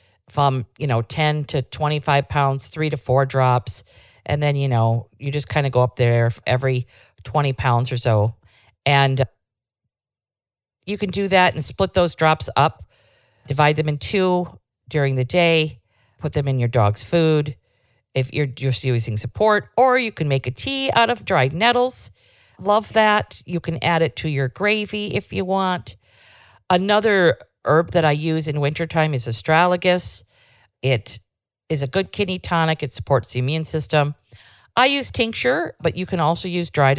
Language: English